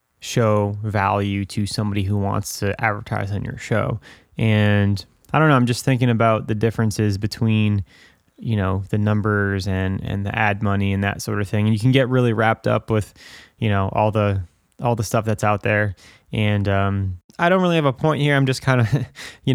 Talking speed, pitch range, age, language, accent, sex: 210 wpm, 105-125 Hz, 20-39, English, American, male